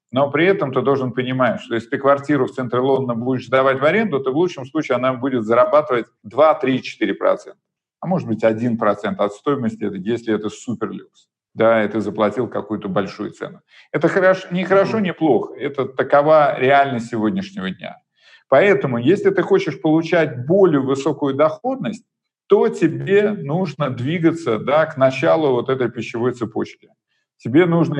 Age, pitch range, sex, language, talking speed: 50-69, 115-165 Hz, male, Russian, 155 wpm